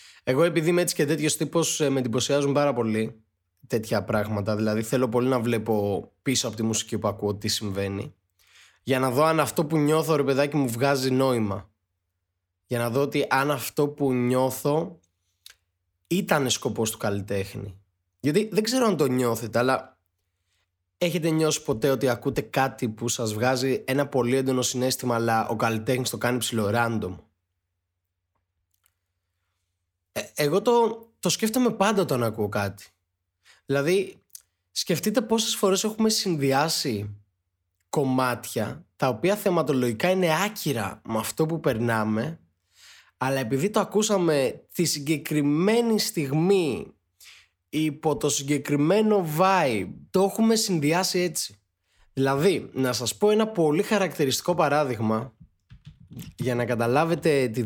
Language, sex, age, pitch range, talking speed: Greek, male, 20-39, 110-160 Hz, 135 wpm